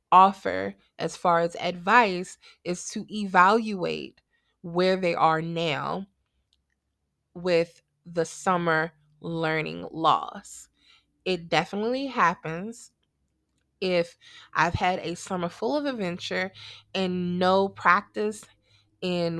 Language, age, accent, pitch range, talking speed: English, 20-39, American, 165-195 Hz, 100 wpm